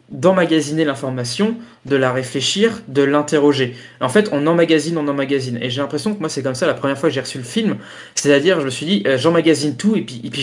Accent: French